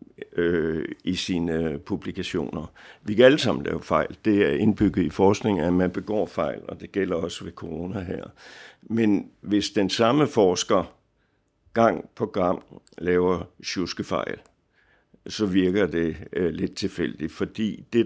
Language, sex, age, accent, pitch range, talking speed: Danish, male, 60-79, native, 85-105 Hz, 140 wpm